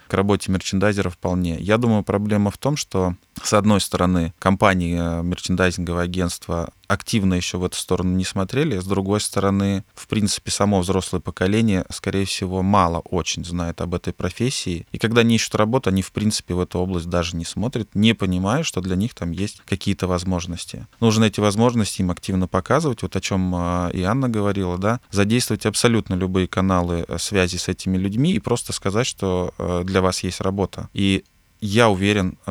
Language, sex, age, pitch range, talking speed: Russian, male, 20-39, 90-105 Hz, 170 wpm